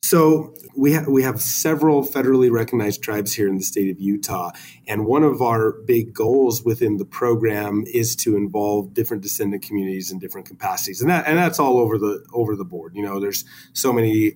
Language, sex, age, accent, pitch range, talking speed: English, male, 30-49, American, 105-125 Hz, 200 wpm